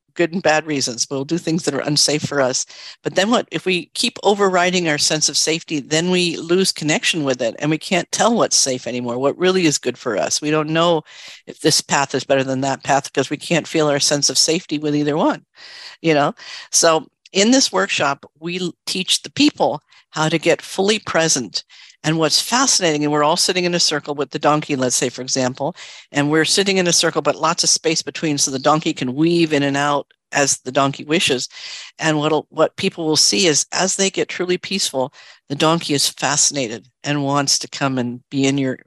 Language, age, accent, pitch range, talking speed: English, 50-69, American, 140-175 Hz, 220 wpm